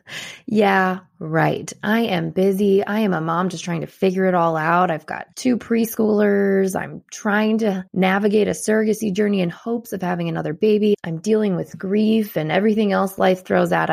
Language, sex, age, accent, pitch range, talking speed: English, female, 20-39, American, 165-205 Hz, 185 wpm